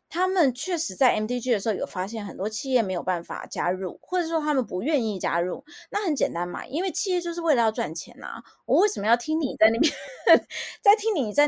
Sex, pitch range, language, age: female, 215-305 Hz, Chinese, 20-39